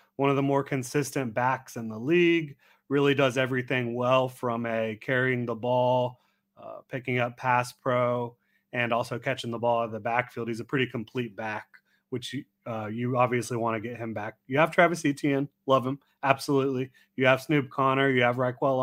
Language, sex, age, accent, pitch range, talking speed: English, male, 30-49, American, 120-140 Hz, 190 wpm